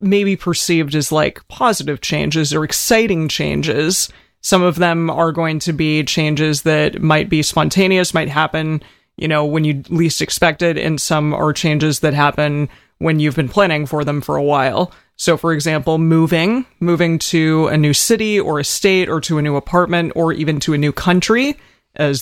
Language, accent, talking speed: English, American, 185 wpm